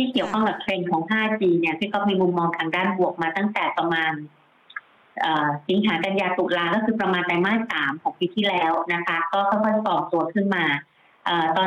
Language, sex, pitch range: Thai, female, 170-205 Hz